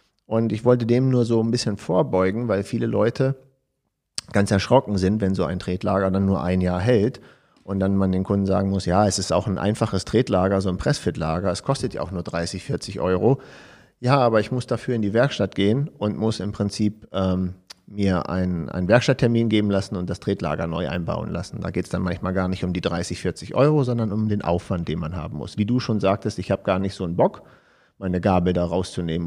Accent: German